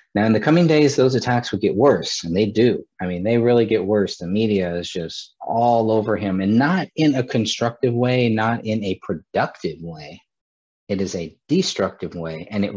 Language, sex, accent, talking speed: English, male, American, 205 wpm